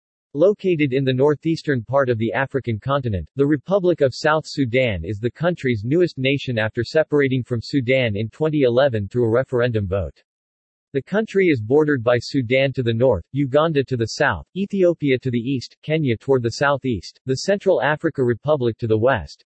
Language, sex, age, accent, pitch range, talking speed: English, male, 40-59, American, 115-150 Hz, 175 wpm